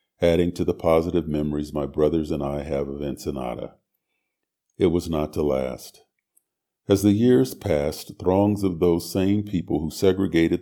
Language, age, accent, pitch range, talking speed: English, 50-69, American, 75-95 Hz, 160 wpm